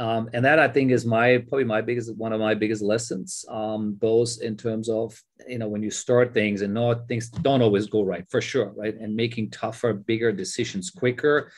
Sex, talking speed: male, 220 wpm